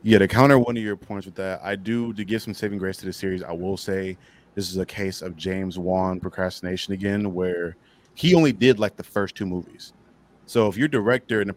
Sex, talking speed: male, 240 wpm